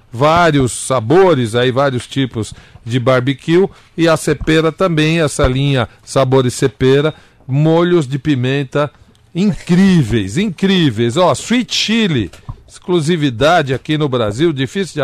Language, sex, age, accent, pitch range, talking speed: Portuguese, male, 50-69, Brazilian, 125-170 Hz, 115 wpm